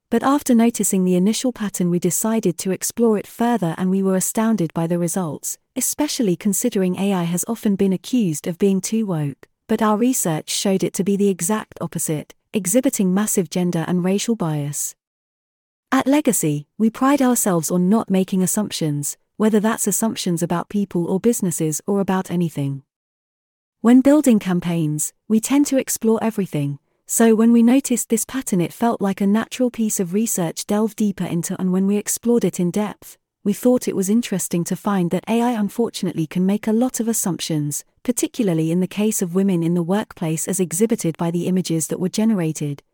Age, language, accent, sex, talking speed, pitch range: 30-49, English, British, female, 180 wpm, 175-225 Hz